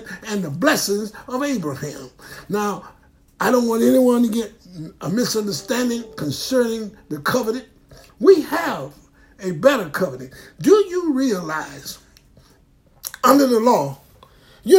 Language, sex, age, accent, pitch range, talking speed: English, male, 60-79, American, 215-300 Hz, 120 wpm